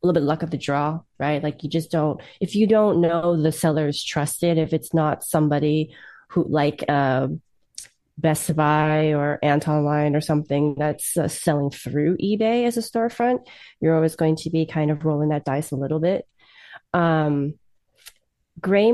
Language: English